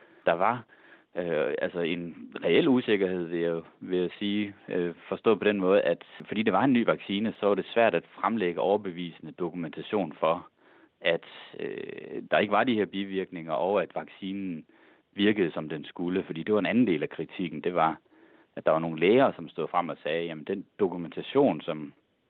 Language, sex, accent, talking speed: Danish, male, native, 190 wpm